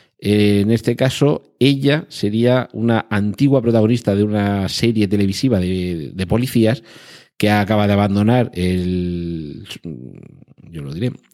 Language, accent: Spanish, Spanish